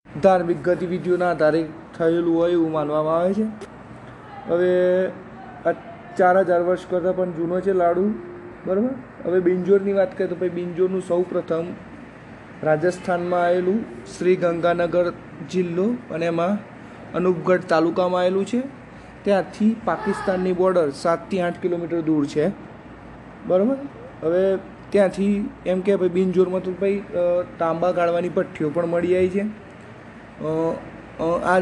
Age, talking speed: 20-39, 120 wpm